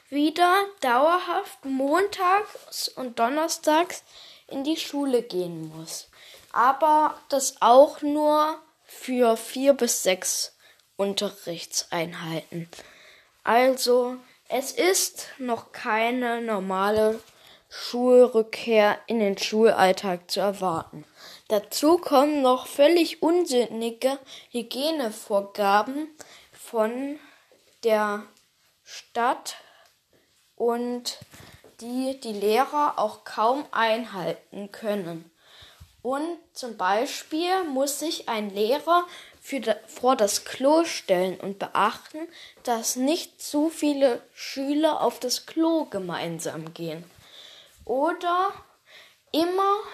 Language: German